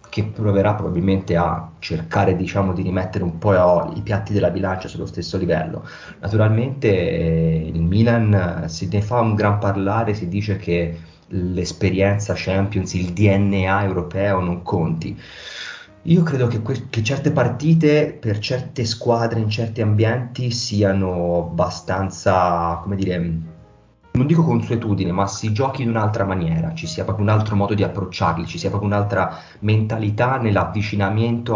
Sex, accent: male, native